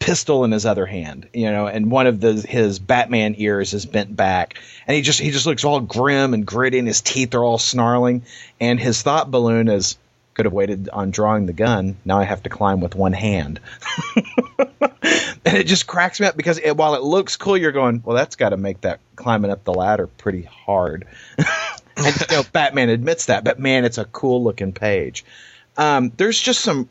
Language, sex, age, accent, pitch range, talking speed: English, male, 30-49, American, 105-130 Hz, 215 wpm